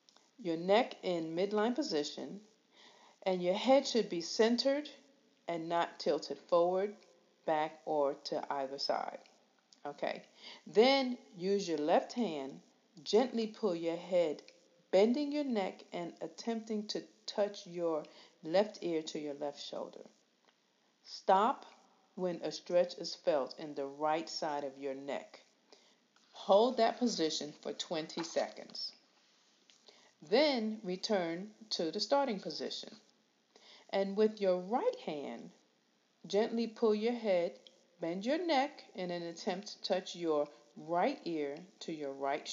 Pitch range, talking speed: 160-220 Hz, 130 wpm